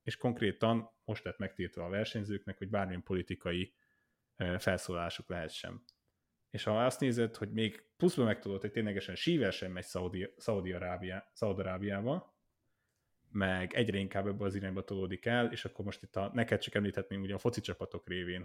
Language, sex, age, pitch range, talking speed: Hungarian, male, 30-49, 95-120 Hz, 150 wpm